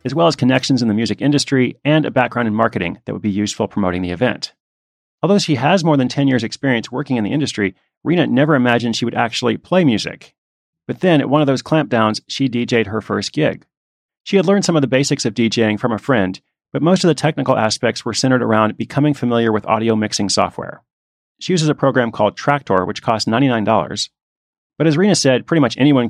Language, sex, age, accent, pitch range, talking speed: English, male, 30-49, American, 110-140 Hz, 220 wpm